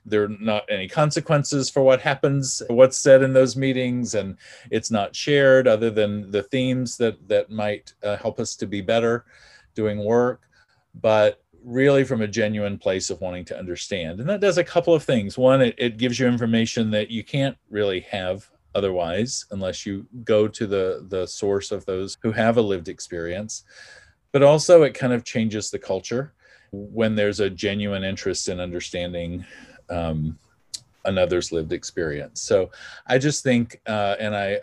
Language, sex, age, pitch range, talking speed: English, male, 40-59, 100-125 Hz, 175 wpm